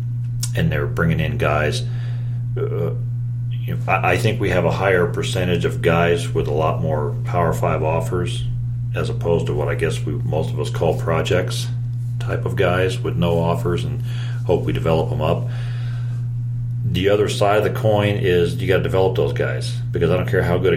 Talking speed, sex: 185 wpm, male